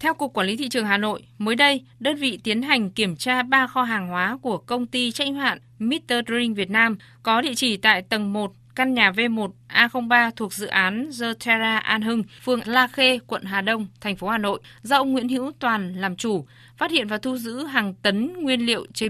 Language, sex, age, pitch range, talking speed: Vietnamese, female, 20-39, 200-250 Hz, 230 wpm